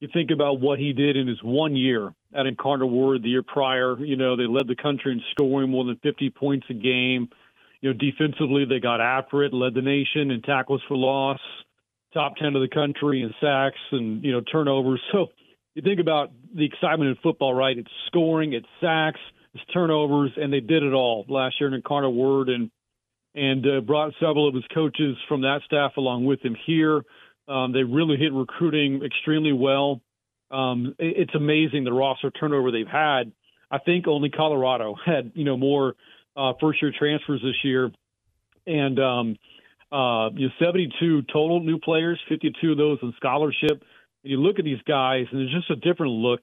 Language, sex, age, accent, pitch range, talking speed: English, male, 40-59, American, 130-150 Hz, 200 wpm